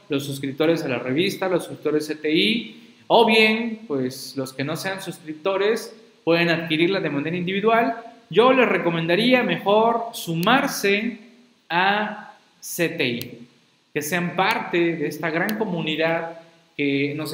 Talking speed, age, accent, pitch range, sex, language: 130 wpm, 40-59, Mexican, 145-200 Hz, male, Spanish